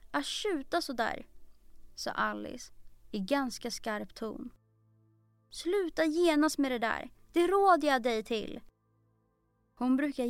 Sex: female